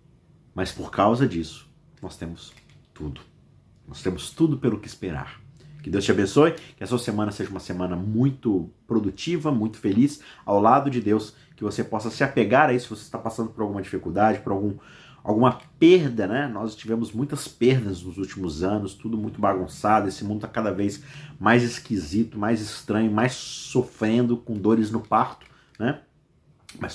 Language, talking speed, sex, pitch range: Portuguese, 170 wpm, male, 95-115 Hz